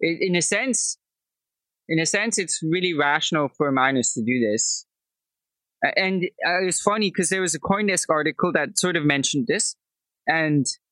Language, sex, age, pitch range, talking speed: English, male, 20-39, 140-180 Hz, 165 wpm